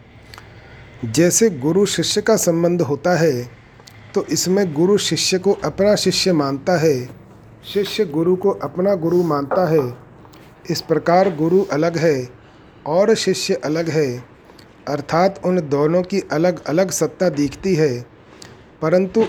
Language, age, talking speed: Hindi, 40-59, 130 wpm